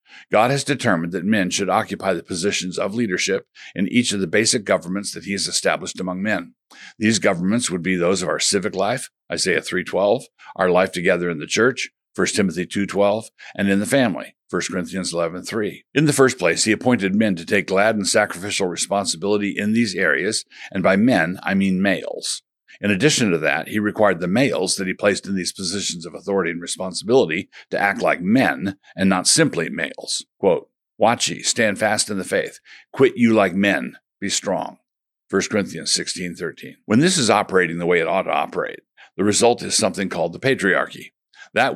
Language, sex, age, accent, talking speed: English, male, 60-79, American, 190 wpm